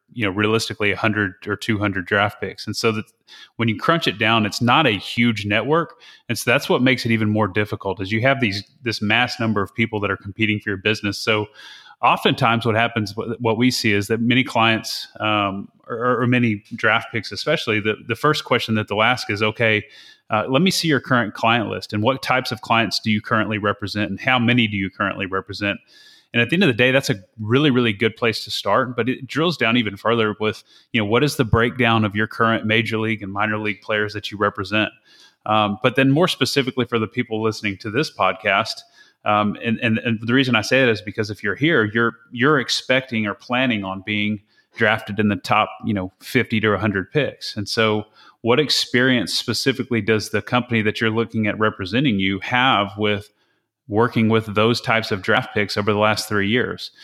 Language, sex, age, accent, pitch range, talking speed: English, male, 30-49, American, 105-120 Hz, 220 wpm